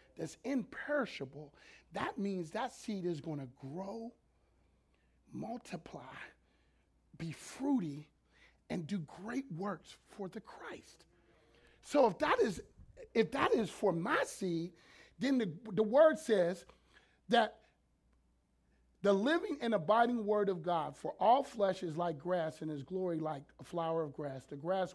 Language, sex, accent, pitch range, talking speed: English, male, American, 160-235 Hz, 140 wpm